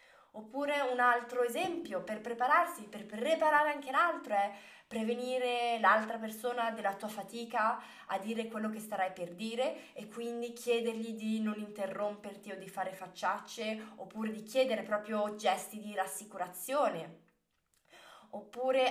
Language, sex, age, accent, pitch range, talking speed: Italian, female, 20-39, native, 195-240 Hz, 135 wpm